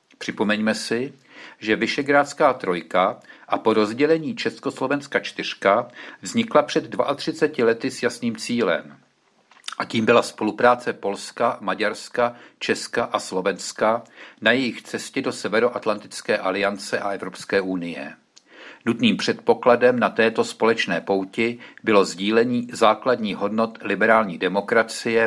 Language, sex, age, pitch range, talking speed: Czech, male, 50-69, 110-130 Hz, 110 wpm